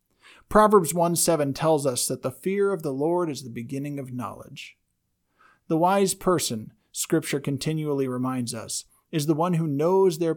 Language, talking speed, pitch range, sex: English, 170 wpm, 125-160 Hz, male